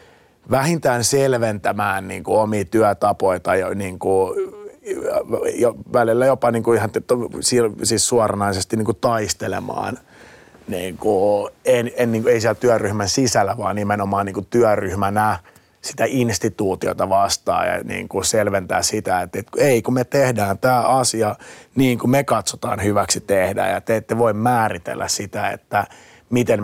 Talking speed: 115 wpm